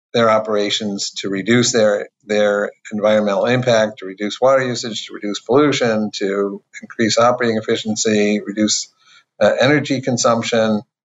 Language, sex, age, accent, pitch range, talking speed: English, male, 50-69, American, 105-120 Hz, 125 wpm